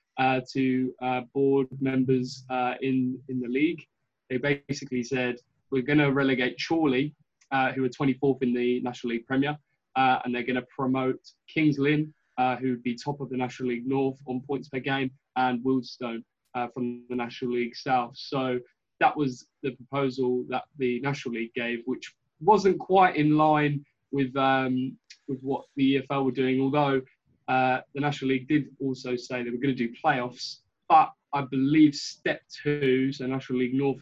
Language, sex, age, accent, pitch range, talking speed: English, male, 20-39, British, 125-140 Hz, 180 wpm